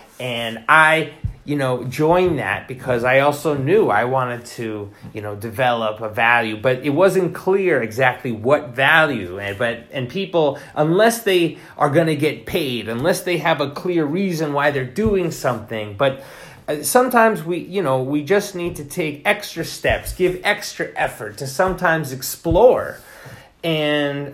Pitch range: 125-170 Hz